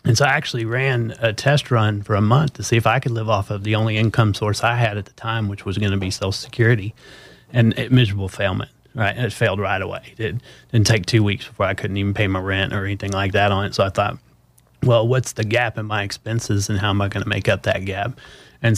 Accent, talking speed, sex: American, 270 wpm, male